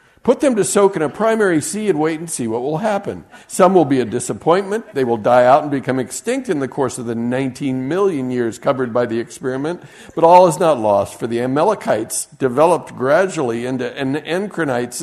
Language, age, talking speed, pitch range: English, 50-69, 210 wpm, 125-175 Hz